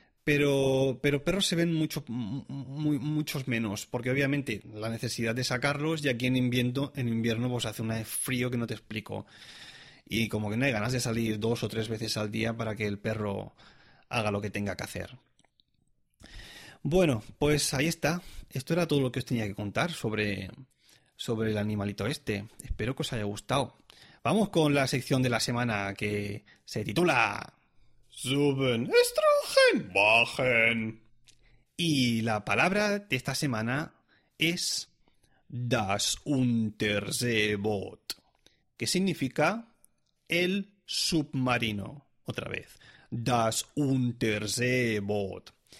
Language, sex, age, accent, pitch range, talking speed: Spanish, male, 30-49, Spanish, 110-145 Hz, 140 wpm